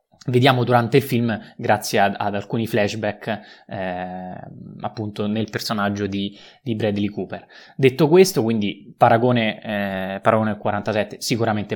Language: Italian